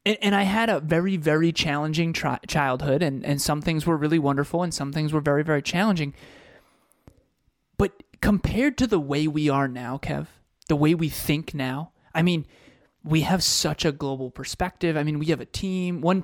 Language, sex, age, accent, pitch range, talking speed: English, male, 20-39, American, 150-190 Hz, 190 wpm